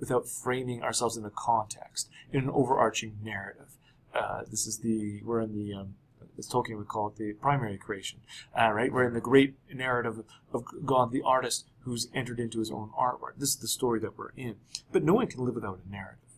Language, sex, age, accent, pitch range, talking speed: English, male, 30-49, American, 115-140 Hz, 215 wpm